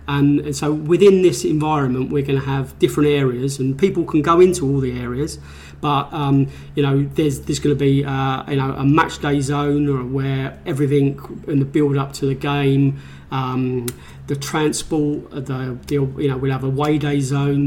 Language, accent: English, British